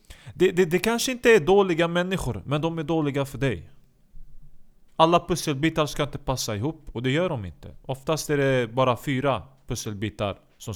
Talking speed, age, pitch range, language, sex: 180 wpm, 30-49, 130-180 Hz, Swedish, male